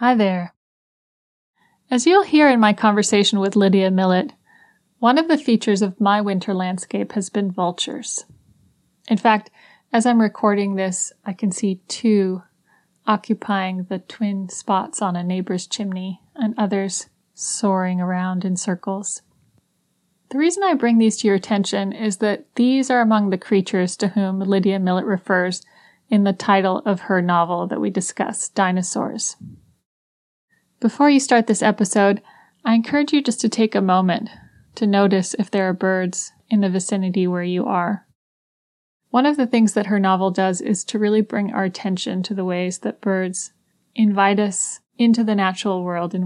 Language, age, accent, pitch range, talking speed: English, 30-49, American, 185-220 Hz, 165 wpm